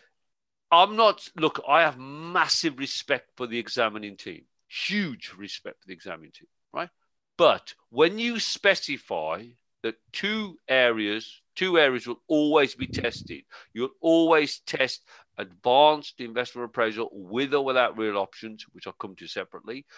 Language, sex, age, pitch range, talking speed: English, male, 50-69, 120-170 Hz, 140 wpm